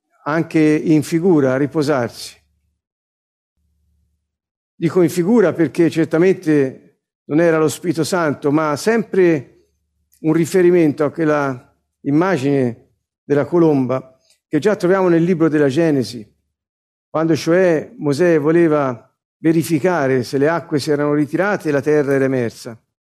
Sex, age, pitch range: male, 50-69, 130-175 Hz